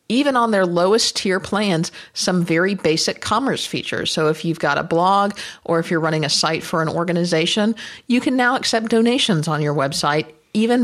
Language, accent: English, American